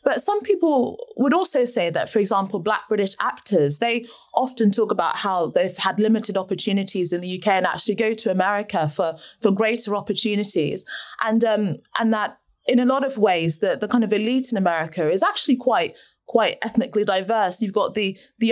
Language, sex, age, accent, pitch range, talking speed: English, female, 20-39, British, 200-255 Hz, 190 wpm